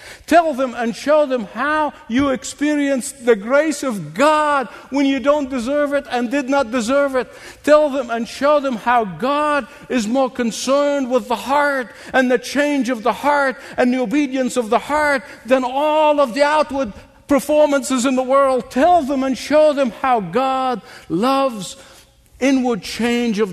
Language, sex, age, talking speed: English, male, 60-79, 170 wpm